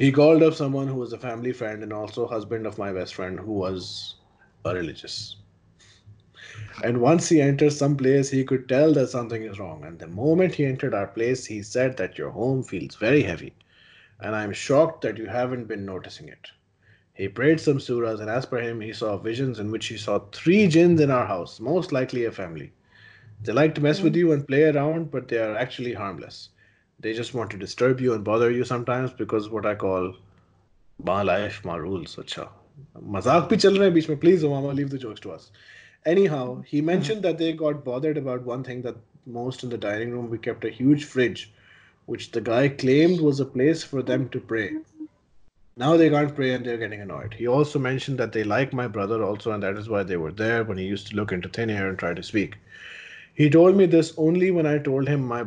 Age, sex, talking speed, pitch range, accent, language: 30-49, male, 210 wpm, 105-145 Hz, Indian, English